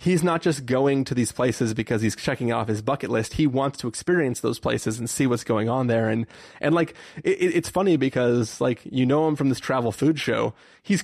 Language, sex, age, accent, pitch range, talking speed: English, male, 30-49, American, 120-150 Hz, 240 wpm